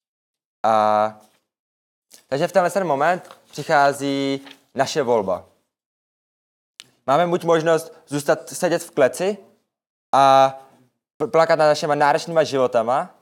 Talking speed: 95 wpm